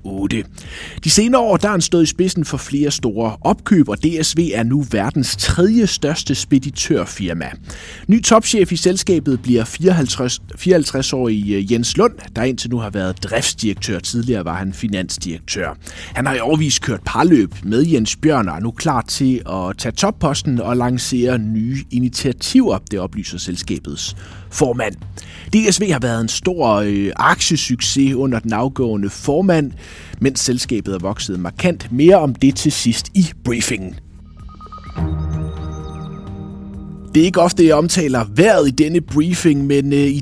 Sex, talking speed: male, 145 wpm